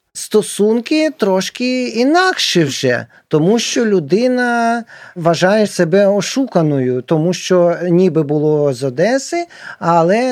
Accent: native